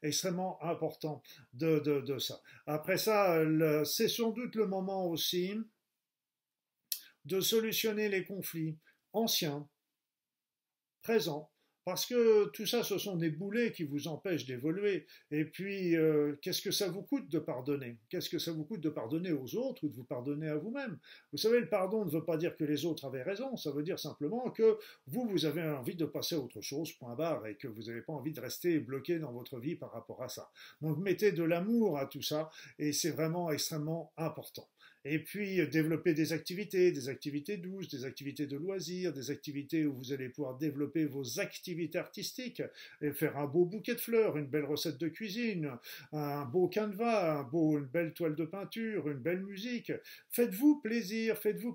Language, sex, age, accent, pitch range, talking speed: French, male, 50-69, French, 145-200 Hz, 190 wpm